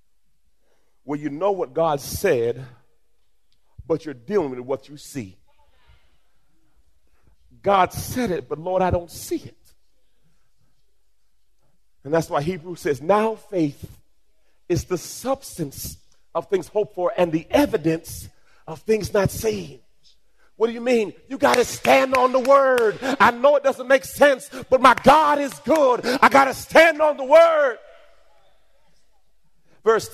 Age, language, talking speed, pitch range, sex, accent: 40-59, English, 145 wpm, 135-225 Hz, male, American